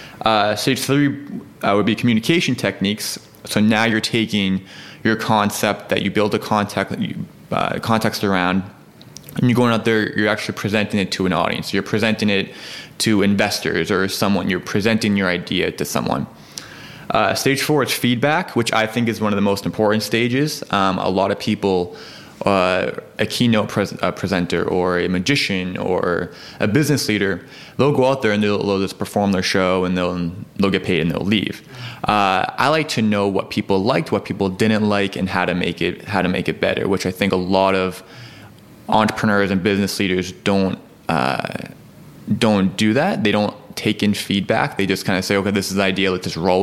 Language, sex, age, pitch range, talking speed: English, male, 20-39, 95-110 Hz, 195 wpm